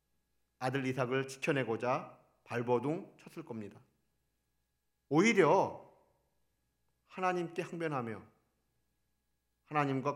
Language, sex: Korean, male